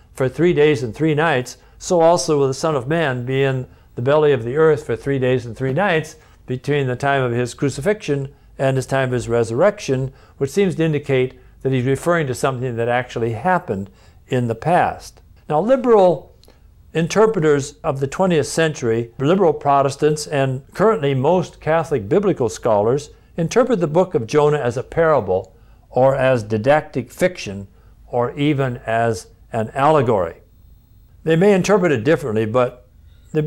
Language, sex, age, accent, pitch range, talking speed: English, male, 60-79, American, 120-160 Hz, 165 wpm